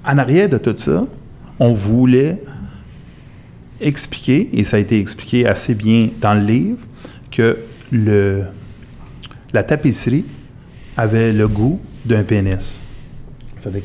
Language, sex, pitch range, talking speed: French, male, 105-135 Hz, 120 wpm